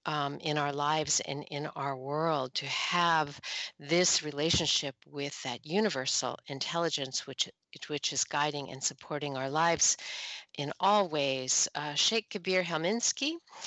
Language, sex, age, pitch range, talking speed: English, female, 50-69, 140-175 Hz, 135 wpm